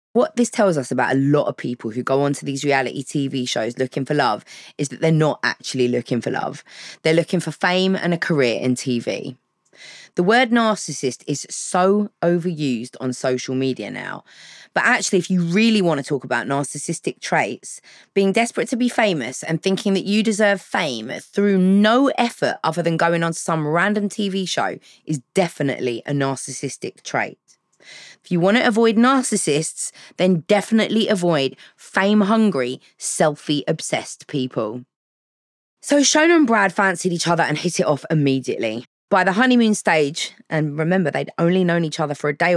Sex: female